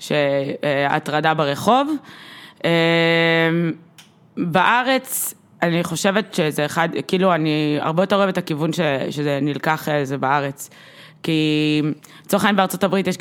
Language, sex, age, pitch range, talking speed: Hebrew, female, 20-39, 150-185 Hz, 105 wpm